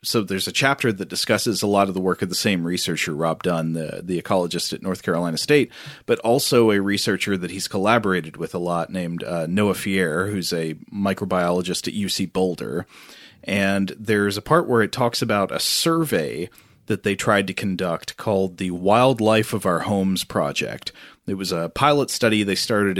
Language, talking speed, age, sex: English, 190 wpm, 30-49, male